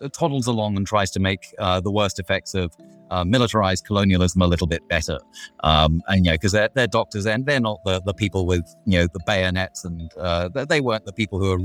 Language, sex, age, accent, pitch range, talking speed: English, male, 30-49, British, 90-110 Hz, 230 wpm